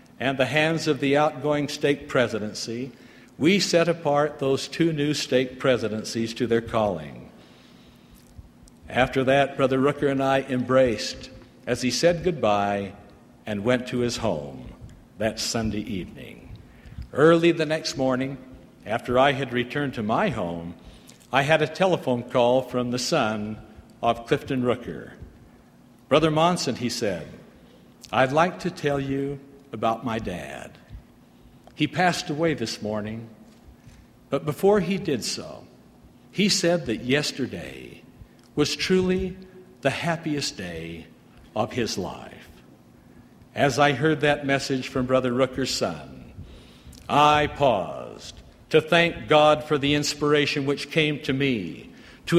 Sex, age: male, 60-79